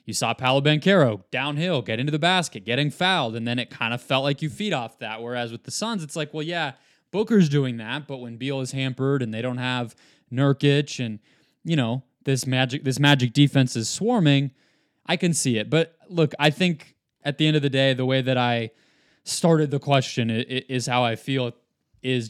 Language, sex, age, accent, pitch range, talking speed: English, male, 20-39, American, 120-150 Hz, 210 wpm